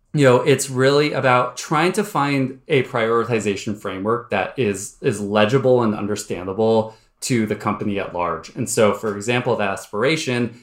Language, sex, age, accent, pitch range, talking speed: English, male, 20-39, American, 105-135 Hz, 160 wpm